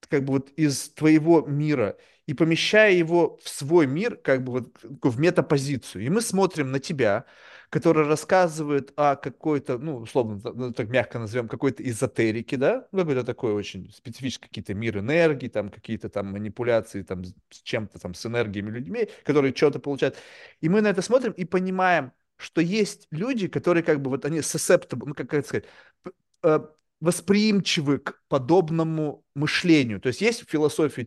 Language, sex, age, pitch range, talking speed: Russian, male, 30-49, 130-175 Hz, 160 wpm